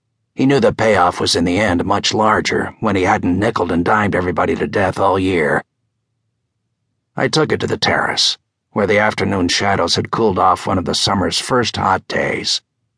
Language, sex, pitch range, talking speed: English, male, 105-120 Hz, 190 wpm